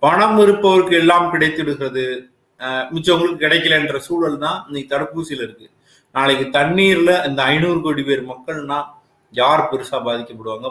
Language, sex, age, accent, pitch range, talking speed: Tamil, male, 30-49, native, 115-155 Hz, 120 wpm